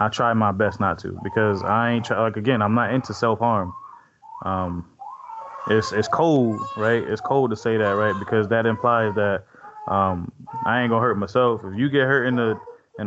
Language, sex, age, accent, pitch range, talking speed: English, male, 20-39, American, 105-135 Hz, 195 wpm